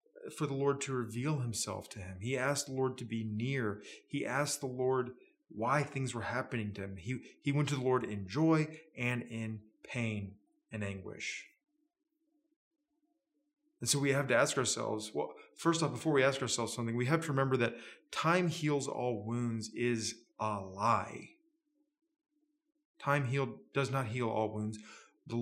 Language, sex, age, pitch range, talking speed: English, male, 30-49, 110-160 Hz, 170 wpm